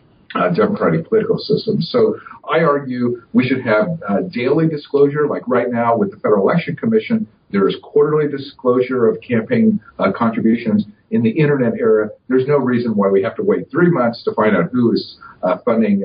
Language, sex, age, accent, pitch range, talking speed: English, male, 50-69, American, 105-175 Hz, 185 wpm